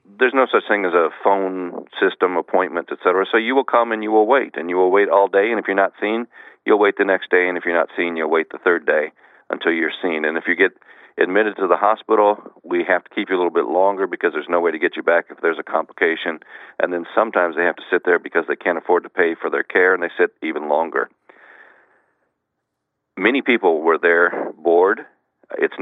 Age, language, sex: 40-59, English, male